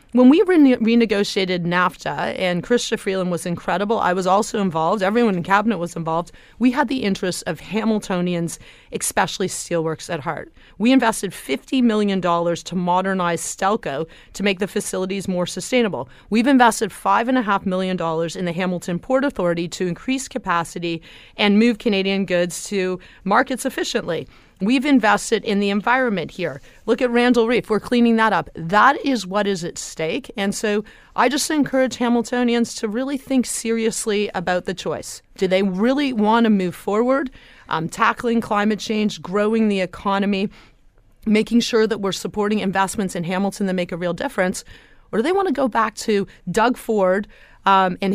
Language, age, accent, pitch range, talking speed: English, 30-49, American, 180-230 Hz, 165 wpm